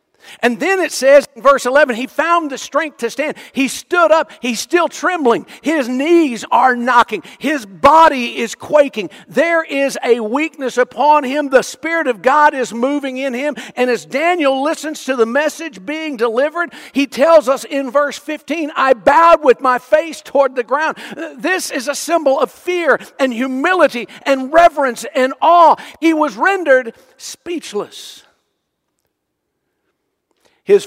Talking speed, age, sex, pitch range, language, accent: 160 wpm, 50-69, male, 235-315 Hz, English, American